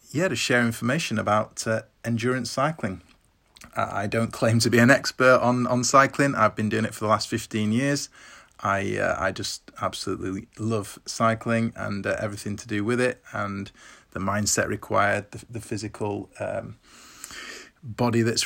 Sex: male